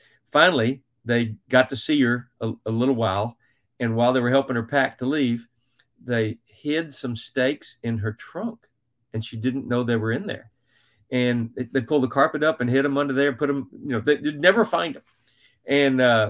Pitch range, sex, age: 125-155 Hz, male, 40-59